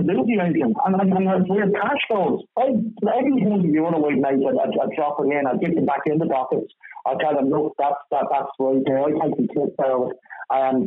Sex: male